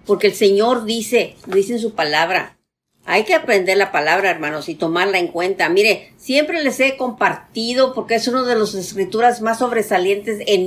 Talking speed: 180 wpm